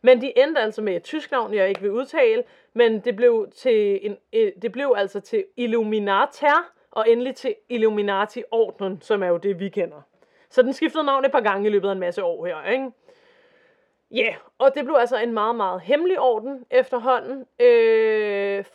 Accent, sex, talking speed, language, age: native, female, 190 wpm, Danish, 30-49